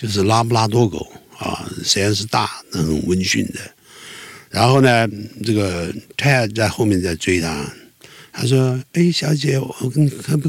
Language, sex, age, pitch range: Chinese, male, 60-79, 90-130 Hz